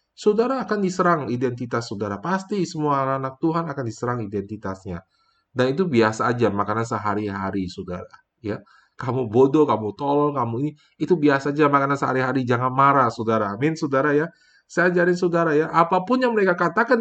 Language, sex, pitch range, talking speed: Indonesian, male, 135-215 Hz, 160 wpm